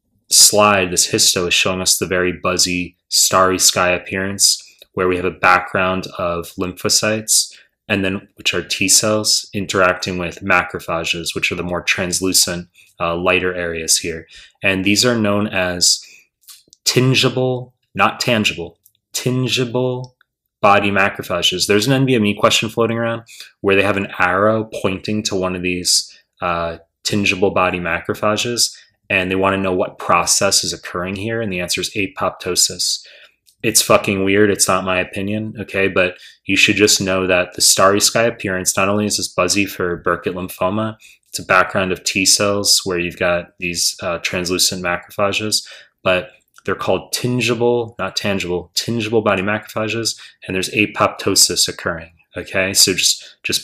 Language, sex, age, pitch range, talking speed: English, male, 20-39, 90-105 Hz, 155 wpm